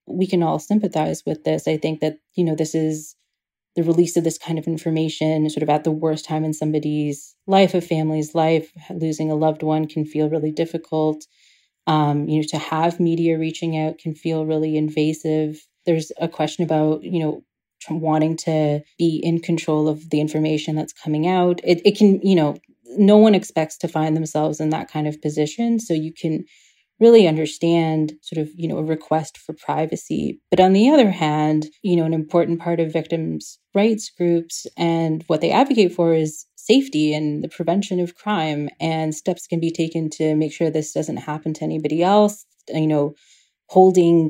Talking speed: 190 wpm